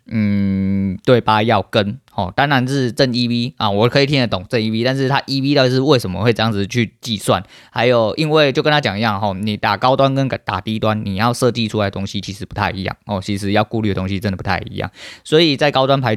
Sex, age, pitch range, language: male, 20-39, 100-125 Hz, Chinese